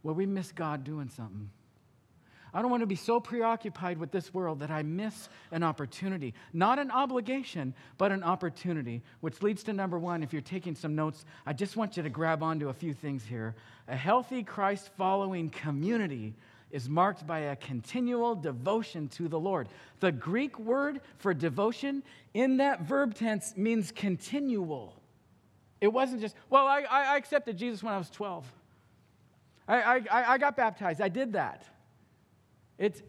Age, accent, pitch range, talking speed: 50-69, American, 125-200 Hz, 170 wpm